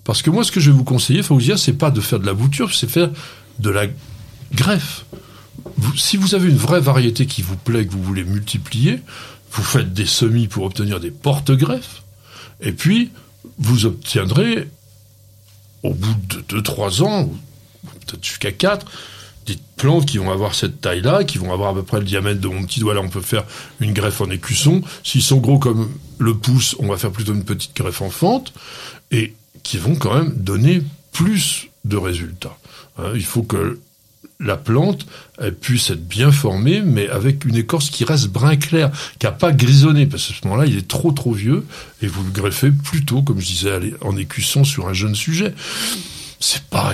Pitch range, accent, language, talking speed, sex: 105-140 Hz, French, French, 205 wpm, male